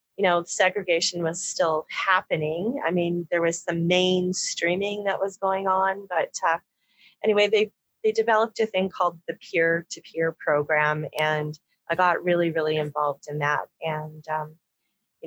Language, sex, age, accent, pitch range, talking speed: English, female, 30-49, American, 165-195 Hz, 160 wpm